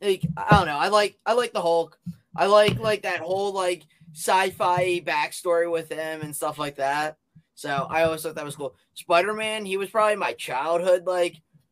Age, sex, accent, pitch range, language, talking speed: 20-39, male, American, 155-190 Hz, English, 200 wpm